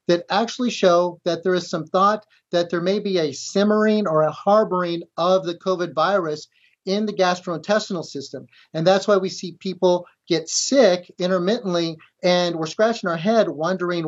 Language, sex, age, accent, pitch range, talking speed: English, male, 40-59, American, 165-205 Hz, 170 wpm